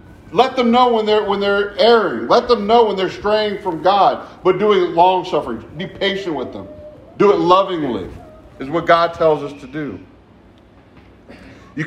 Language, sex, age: English, male, 40-59